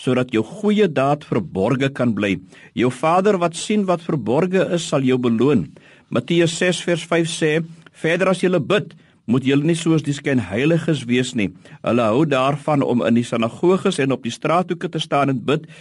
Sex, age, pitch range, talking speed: male, 50-69, 130-175 Hz, 190 wpm